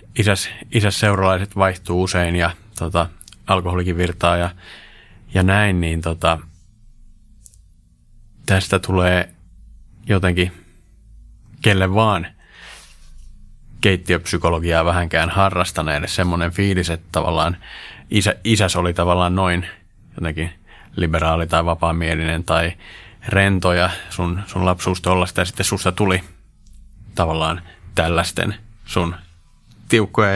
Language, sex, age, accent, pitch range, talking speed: Finnish, male, 30-49, native, 85-100 Hz, 100 wpm